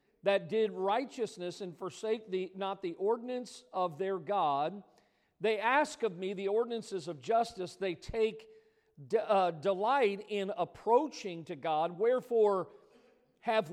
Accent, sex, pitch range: American, male, 190-235 Hz